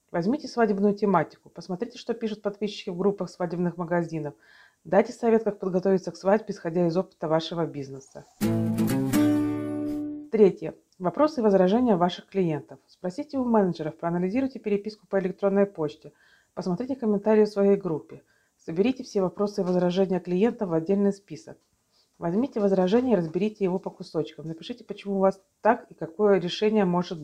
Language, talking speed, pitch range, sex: Russian, 145 wpm, 170-215 Hz, female